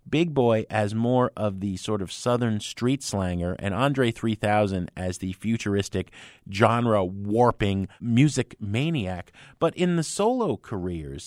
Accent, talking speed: American, 135 wpm